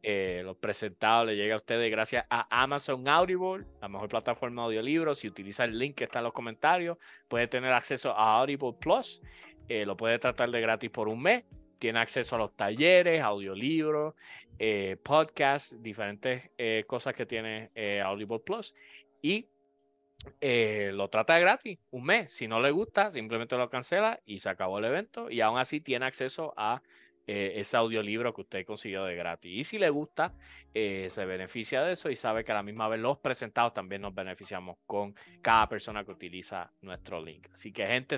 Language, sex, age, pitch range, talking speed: English, male, 30-49, 105-140 Hz, 190 wpm